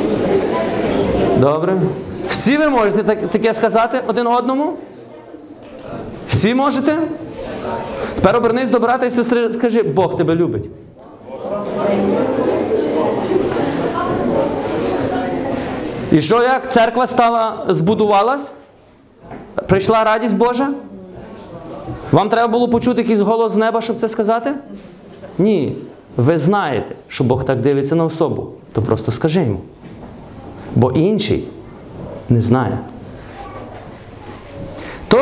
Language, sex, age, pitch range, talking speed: Ukrainian, male, 30-49, 165-235 Hz, 100 wpm